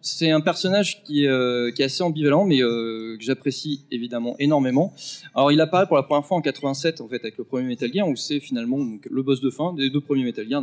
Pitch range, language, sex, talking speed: 130-165 Hz, French, male, 255 wpm